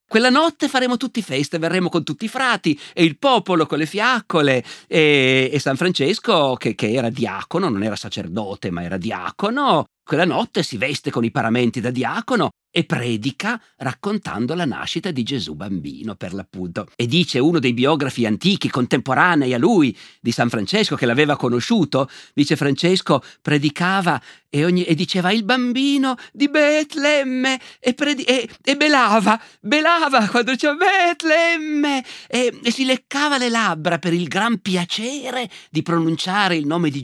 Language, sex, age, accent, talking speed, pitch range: Italian, male, 50-69, native, 155 wpm, 145-240 Hz